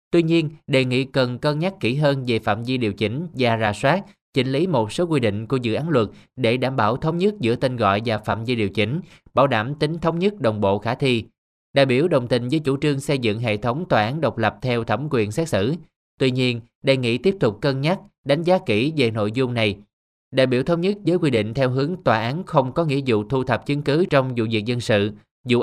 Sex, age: male, 20-39